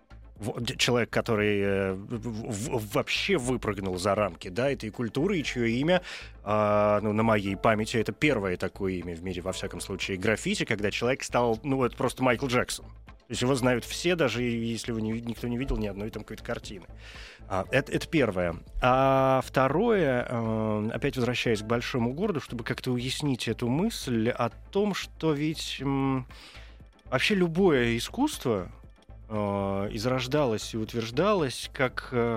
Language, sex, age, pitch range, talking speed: Russian, male, 20-39, 110-135 Hz, 155 wpm